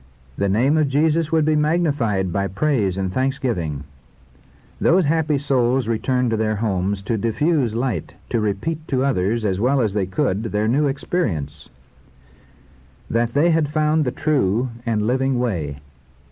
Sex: male